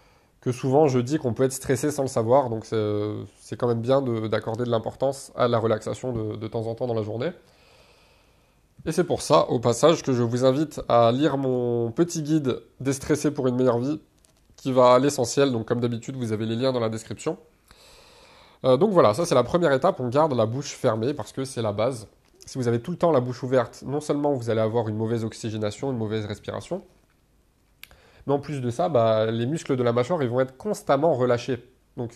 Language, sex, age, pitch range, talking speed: French, male, 20-39, 115-140 Hz, 230 wpm